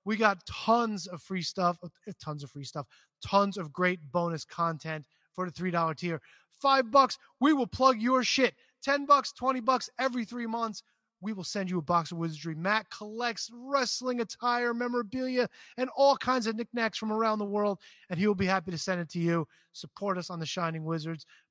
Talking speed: 200 wpm